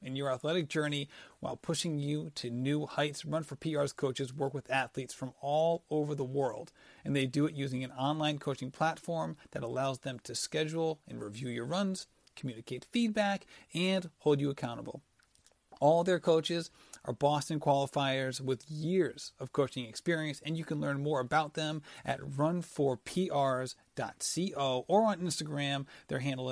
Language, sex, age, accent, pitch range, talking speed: English, male, 40-59, American, 130-160 Hz, 160 wpm